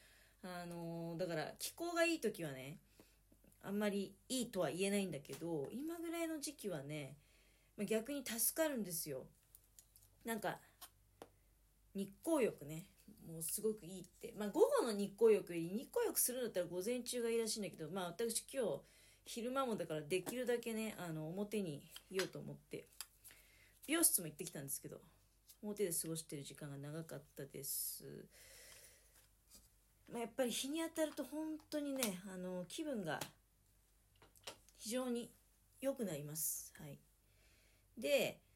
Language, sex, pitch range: Japanese, female, 155-250 Hz